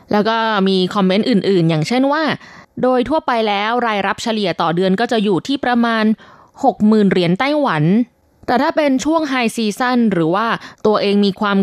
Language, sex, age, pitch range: Thai, female, 20-39, 190-240 Hz